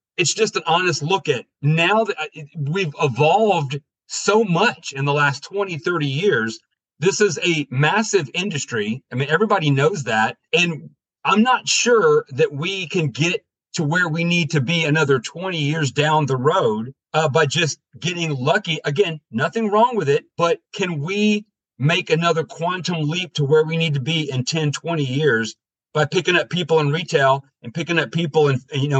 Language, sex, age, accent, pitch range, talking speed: English, male, 40-59, American, 145-175 Hz, 180 wpm